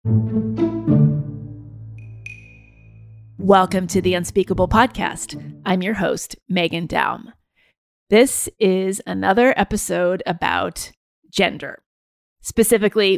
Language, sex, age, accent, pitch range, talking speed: English, female, 30-49, American, 160-200 Hz, 75 wpm